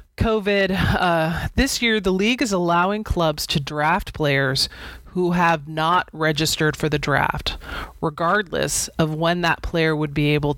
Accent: American